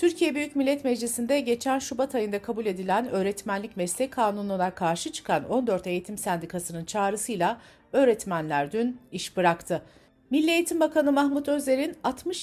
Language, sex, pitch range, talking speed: Turkish, female, 180-265 Hz, 135 wpm